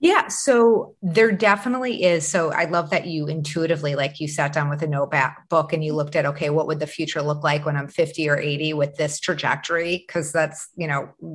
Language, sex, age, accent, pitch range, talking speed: English, female, 30-49, American, 150-190 Hz, 215 wpm